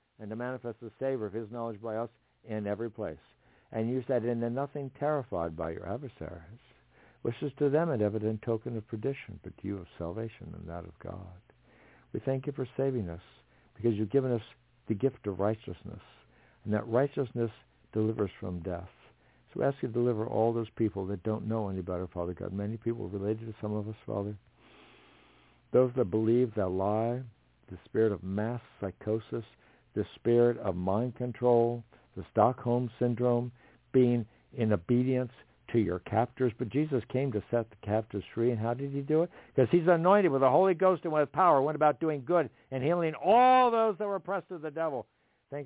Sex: male